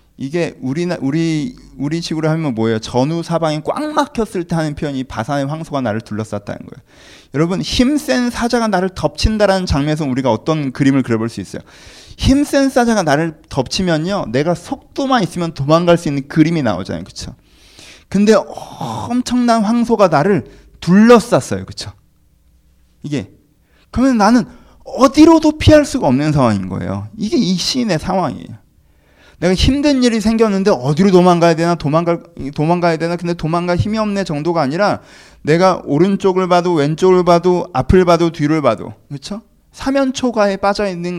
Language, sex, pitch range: Korean, male, 140-205 Hz